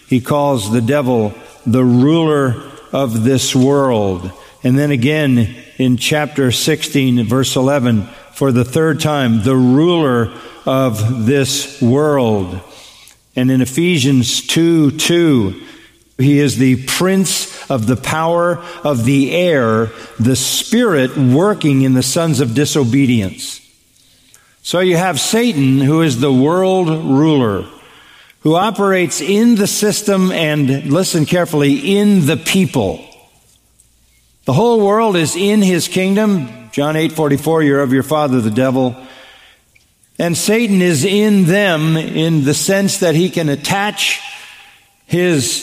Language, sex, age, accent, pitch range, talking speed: English, male, 50-69, American, 125-165 Hz, 130 wpm